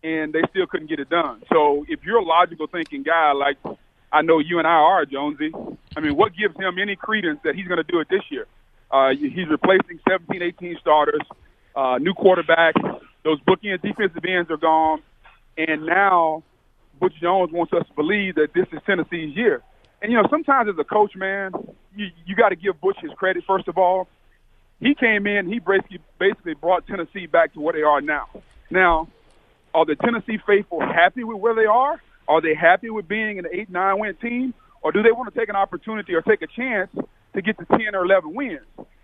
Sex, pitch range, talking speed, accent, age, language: male, 170-225 Hz, 210 wpm, American, 40-59, English